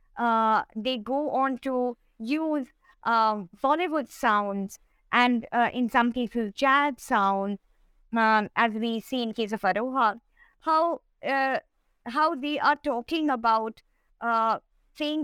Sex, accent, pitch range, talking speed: female, Indian, 225-285 Hz, 130 wpm